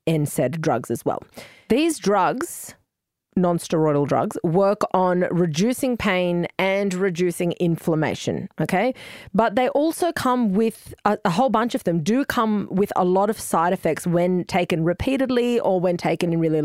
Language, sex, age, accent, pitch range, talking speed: English, female, 30-49, Australian, 170-220 Hz, 160 wpm